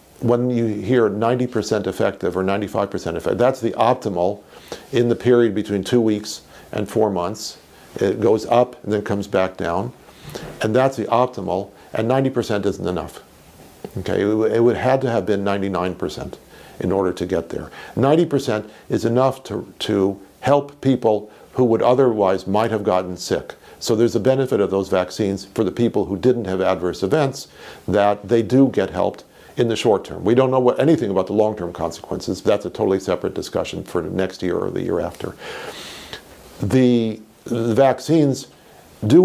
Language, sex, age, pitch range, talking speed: English, male, 50-69, 100-125 Hz, 175 wpm